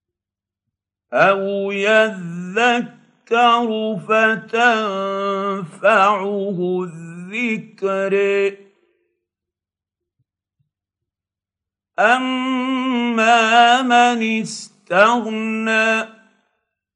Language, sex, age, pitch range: Arabic, male, 50-69, 180-230 Hz